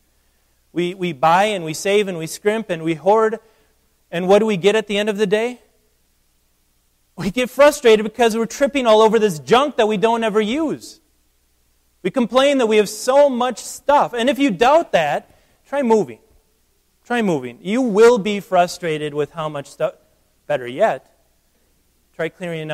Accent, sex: American, male